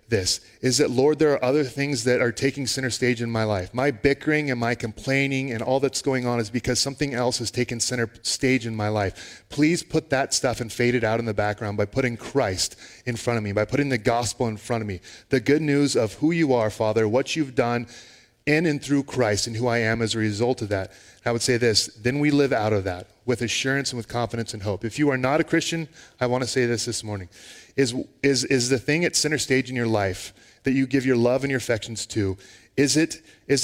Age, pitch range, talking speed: 30-49, 115-135 Hz, 250 wpm